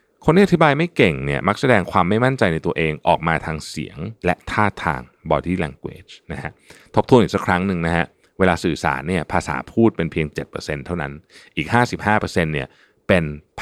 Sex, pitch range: male, 80-125 Hz